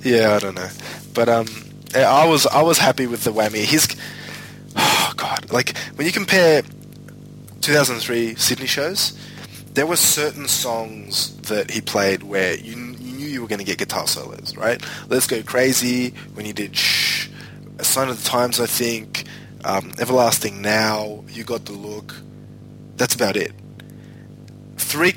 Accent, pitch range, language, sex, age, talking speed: Australian, 105-135 Hz, English, male, 20-39, 160 wpm